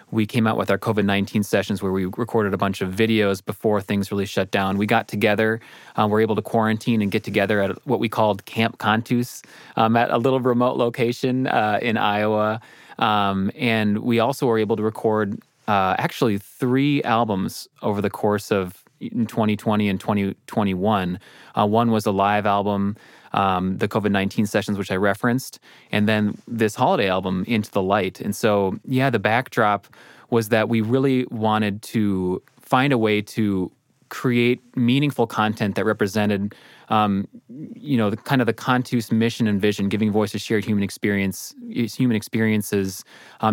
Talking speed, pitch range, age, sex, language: 175 wpm, 100-115 Hz, 20-39, male, English